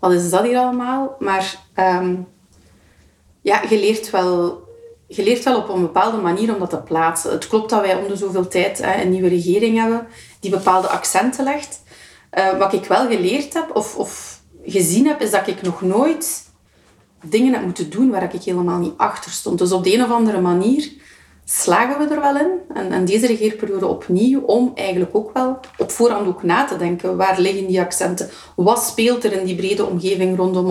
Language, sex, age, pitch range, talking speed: Dutch, female, 30-49, 185-235 Hz, 190 wpm